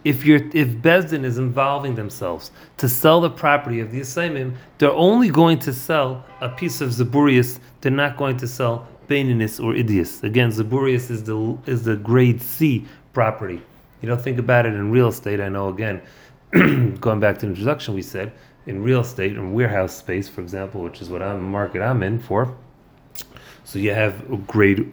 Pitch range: 110-140 Hz